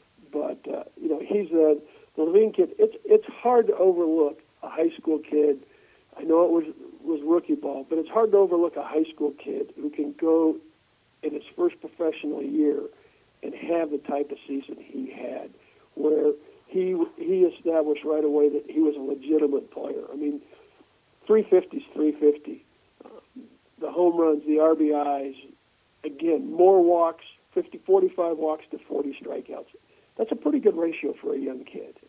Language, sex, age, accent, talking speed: English, male, 50-69, American, 170 wpm